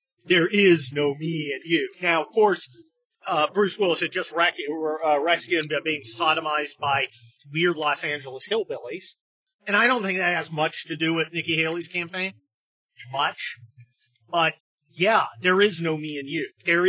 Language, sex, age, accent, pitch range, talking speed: English, male, 40-59, American, 140-180 Hz, 170 wpm